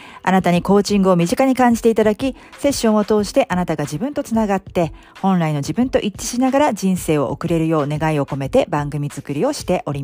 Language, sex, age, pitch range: Japanese, female, 40-59, 155-215 Hz